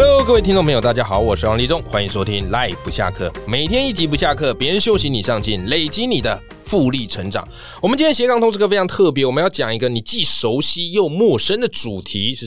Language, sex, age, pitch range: Chinese, male, 20-39, 105-165 Hz